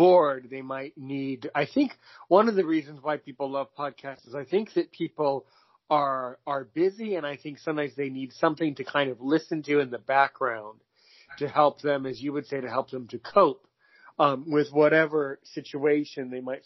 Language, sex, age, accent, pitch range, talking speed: English, male, 40-59, American, 130-145 Hz, 200 wpm